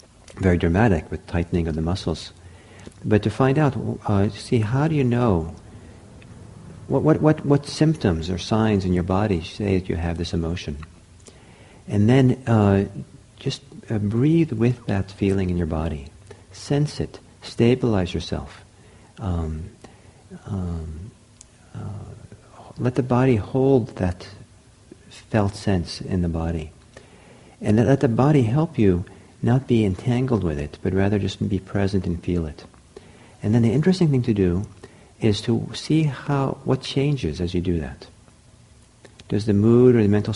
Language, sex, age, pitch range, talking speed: English, male, 50-69, 90-120 Hz, 155 wpm